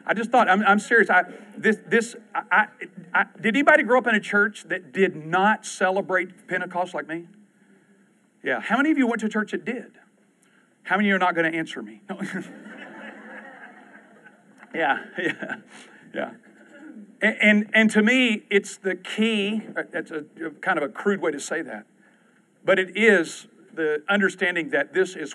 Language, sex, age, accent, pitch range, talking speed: English, male, 40-59, American, 165-215 Hz, 180 wpm